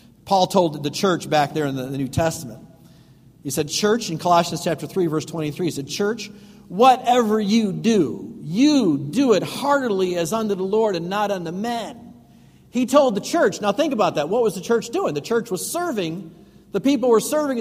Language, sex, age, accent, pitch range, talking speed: English, male, 50-69, American, 170-240 Hz, 200 wpm